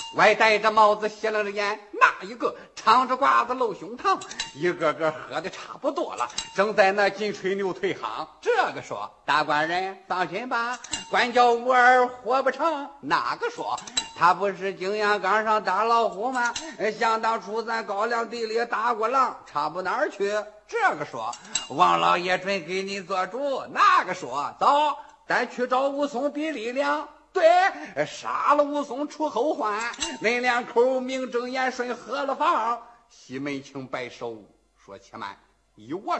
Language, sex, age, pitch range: Chinese, male, 50-69, 205-290 Hz